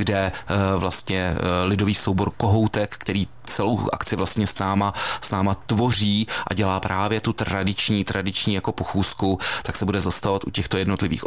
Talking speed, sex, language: 155 wpm, male, Czech